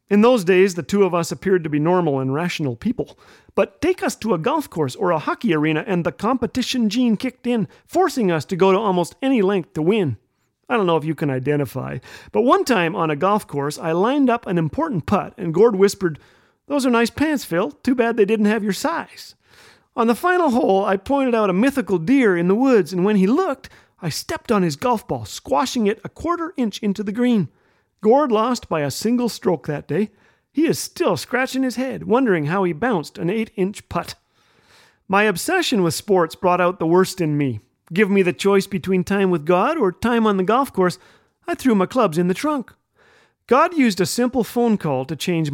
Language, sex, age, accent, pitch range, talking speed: English, male, 40-59, American, 170-235 Hz, 220 wpm